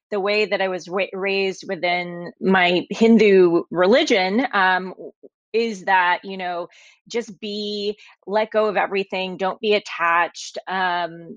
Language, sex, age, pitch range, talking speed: English, female, 30-49, 185-220 Hz, 130 wpm